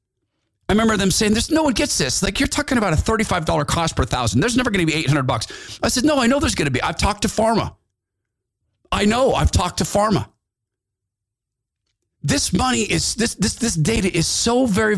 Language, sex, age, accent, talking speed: English, male, 40-59, American, 215 wpm